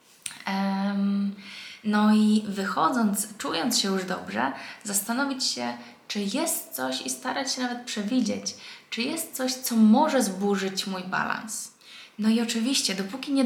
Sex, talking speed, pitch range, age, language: female, 135 wpm, 200-240 Hz, 20-39, Polish